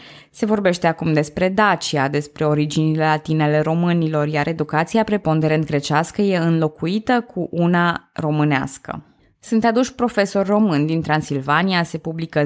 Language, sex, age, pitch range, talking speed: Romanian, female, 20-39, 155-205 Hz, 125 wpm